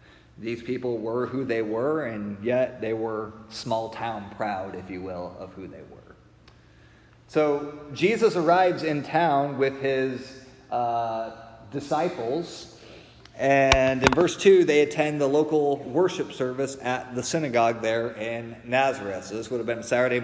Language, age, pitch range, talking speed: English, 30-49, 115-140 Hz, 145 wpm